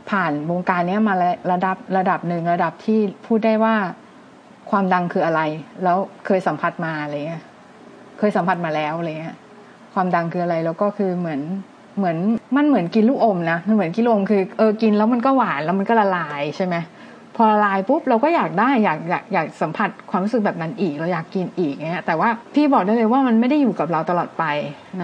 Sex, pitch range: female, 185-235 Hz